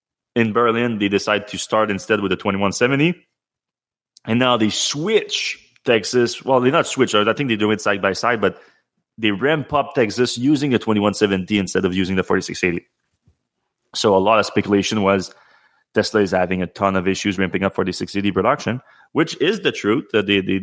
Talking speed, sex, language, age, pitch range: 185 wpm, male, English, 30-49, 95-115 Hz